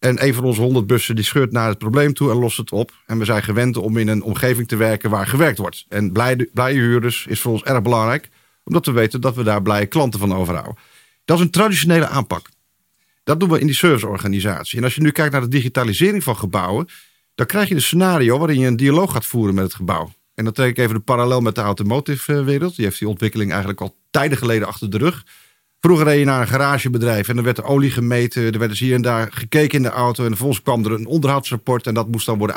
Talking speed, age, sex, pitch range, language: 250 wpm, 40-59, male, 110-140 Hz, Dutch